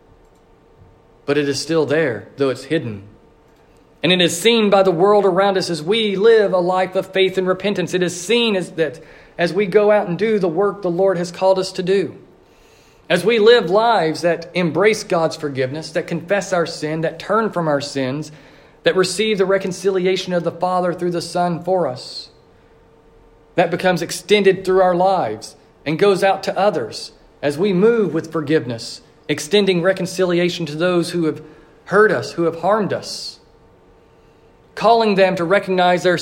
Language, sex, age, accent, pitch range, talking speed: English, male, 40-59, American, 165-195 Hz, 180 wpm